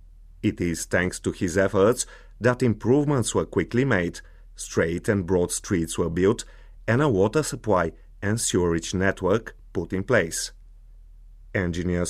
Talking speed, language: 140 wpm, English